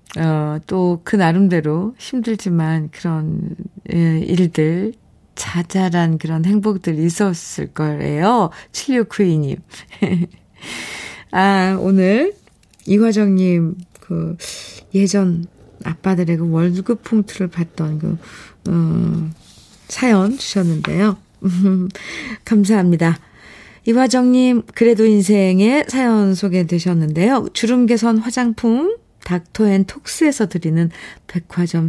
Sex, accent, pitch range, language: female, native, 170-230 Hz, Korean